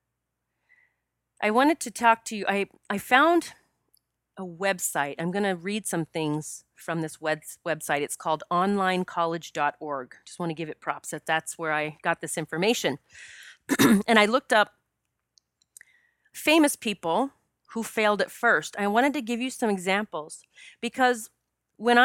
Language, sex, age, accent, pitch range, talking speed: English, female, 30-49, American, 160-210 Hz, 145 wpm